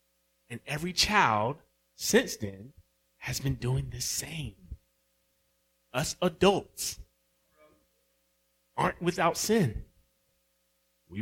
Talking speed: 85 wpm